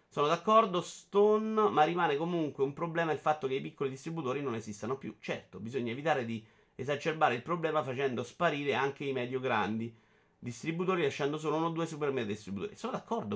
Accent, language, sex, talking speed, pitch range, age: native, Italian, male, 175 wpm, 150-205 Hz, 30-49